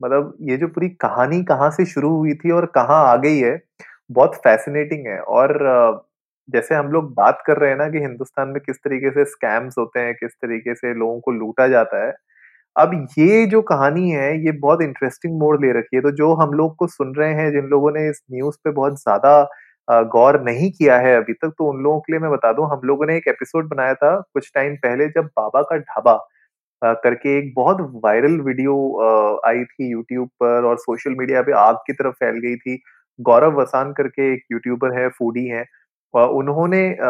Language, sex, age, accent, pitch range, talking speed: Hindi, male, 20-39, native, 120-150 Hz, 205 wpm